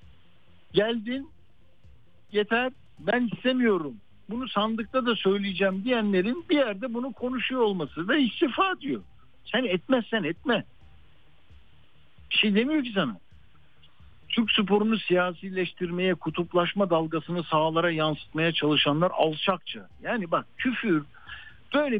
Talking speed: 105 wpm